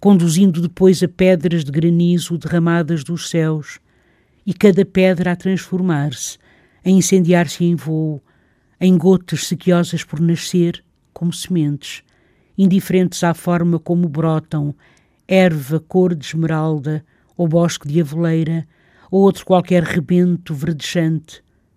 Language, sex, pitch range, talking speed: Portuguese, female, 160-180 Hz, 120 wpm